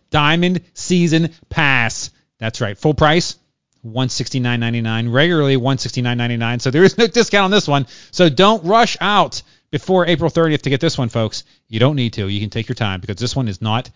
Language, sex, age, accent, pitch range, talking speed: English, male, 30-49, American, 120-175 Hz, 190 wpm